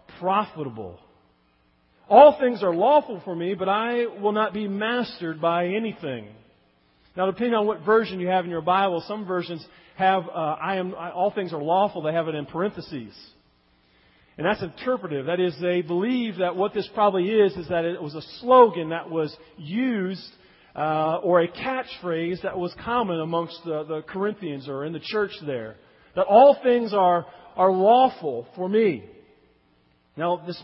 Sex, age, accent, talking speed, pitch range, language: male, 40-59, American, 170 wpm, 170-225 Hz, English